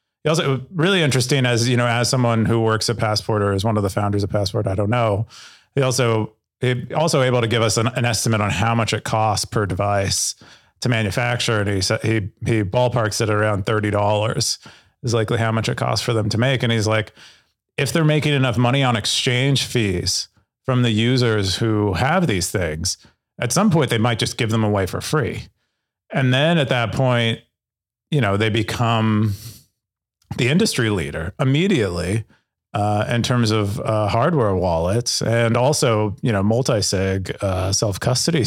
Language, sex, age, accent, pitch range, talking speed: English, male, 30-49, American, 100-120 Hz, 185 wpm